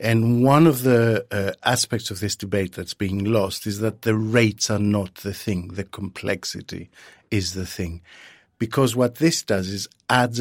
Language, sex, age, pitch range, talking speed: English, male, 50-69, 100-130 Hz, 180 wpm